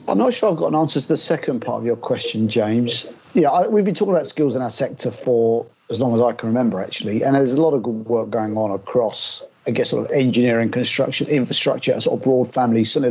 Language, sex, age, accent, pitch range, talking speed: English, male, 40-59, British, 120-150 Hz, 255 wpm